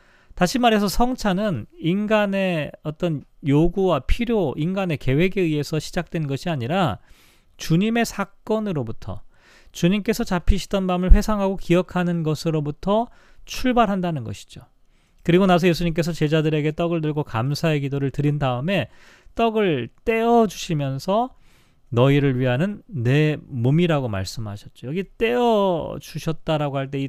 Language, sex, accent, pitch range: Korean, male, native, 140-195 Hz